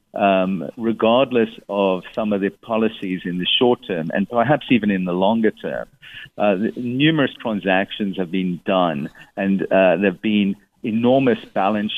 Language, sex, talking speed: English, male, 160 wpm